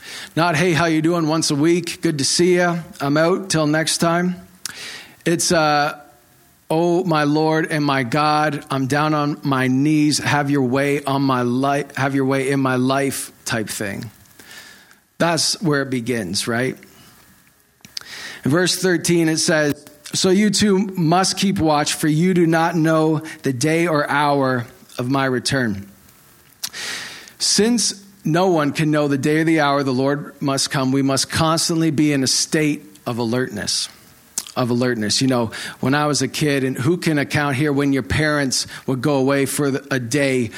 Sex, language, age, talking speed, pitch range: male, English, 40-59, 175 wpm, 135-165 Hz